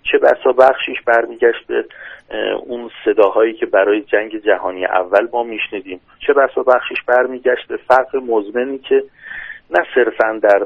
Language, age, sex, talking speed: Persian, 40-59, male, 130 wpm